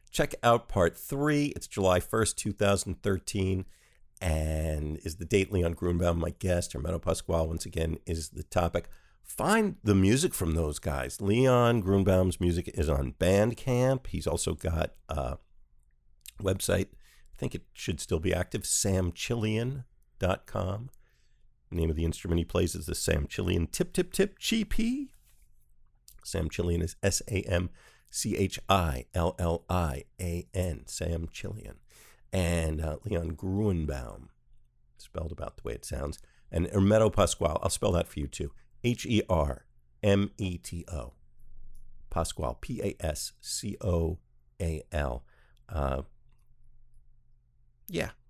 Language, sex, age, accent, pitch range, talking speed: English, male, 50-69, American, 80-105 Hz, 115 wpm